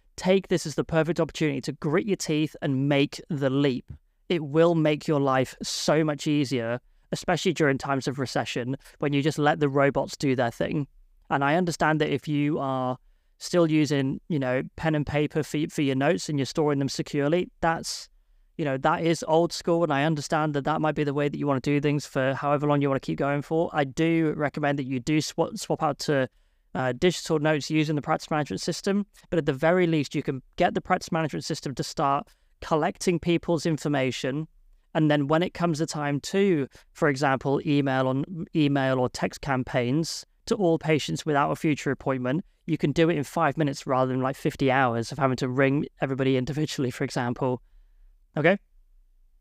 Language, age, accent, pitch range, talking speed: English, 20-39, British, 135-160 Hz, 205 wpm